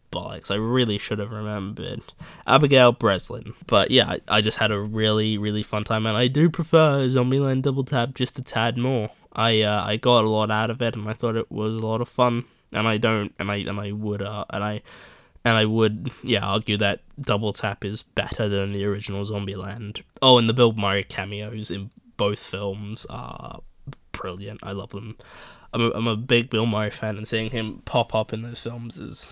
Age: 10-29